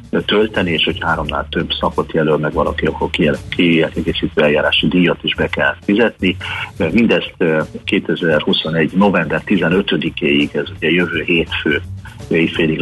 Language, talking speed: Hungarian, 120 wpm